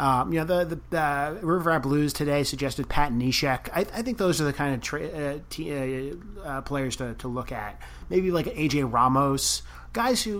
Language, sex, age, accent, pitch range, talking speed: English, male, 30-49, American, 125-150 Hz, 215 wpm